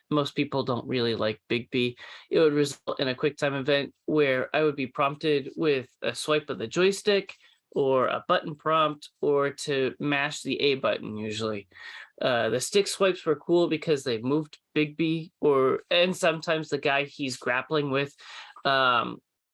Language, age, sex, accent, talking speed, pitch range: English, 30-49, male, American, 175 wpm, 135-160 Hz